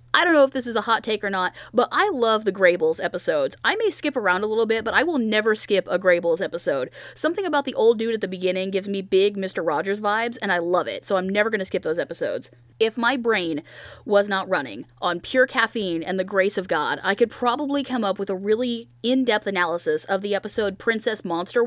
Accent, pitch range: American, 185-250 Hz